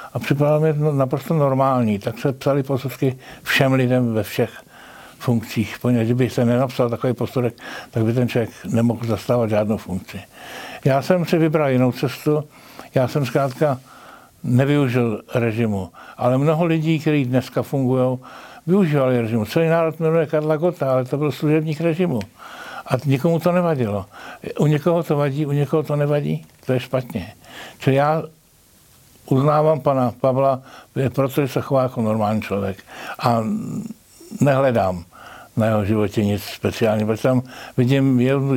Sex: male